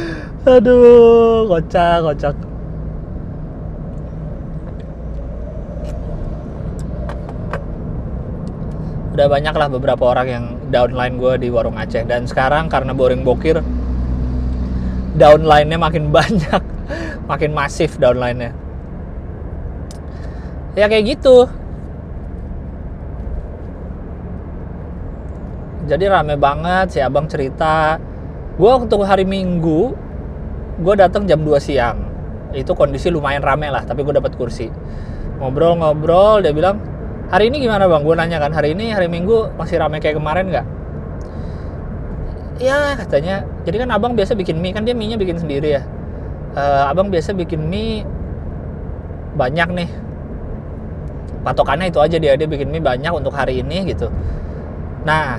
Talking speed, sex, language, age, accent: 115 wpm, male, Indonesian, 20-39, native